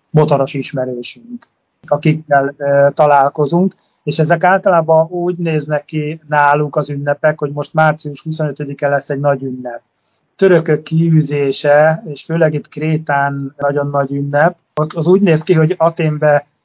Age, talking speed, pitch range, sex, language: 30-49, 140 wpm, 145-165 Hz, male, Hungarian